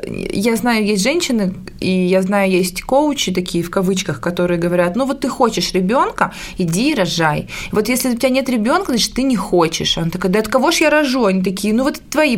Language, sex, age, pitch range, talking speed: Russian, female, 20-39, 185-240 Hz, 220 wpm